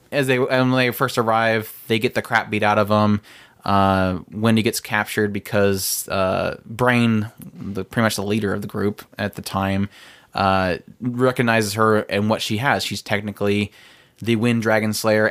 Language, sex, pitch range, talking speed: English, male, 105-125 Hz, 175 wpm